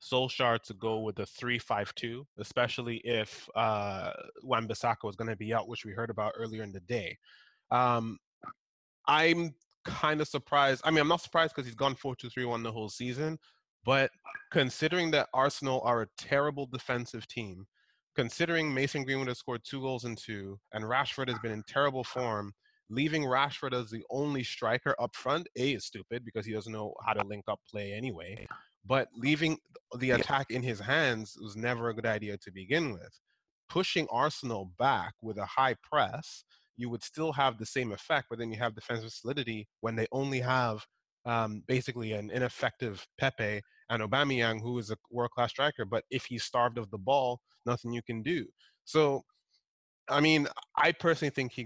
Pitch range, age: 110-140 Hz, 20-39